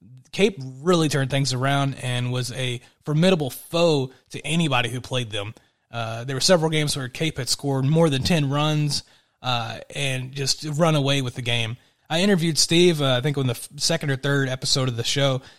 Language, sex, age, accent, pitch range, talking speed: English, male, 30-49, American, 135-175 Hz, 195 wpm